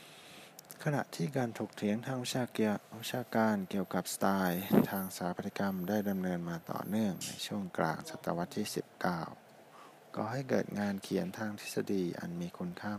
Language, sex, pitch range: Thai, male, 95-110 Hz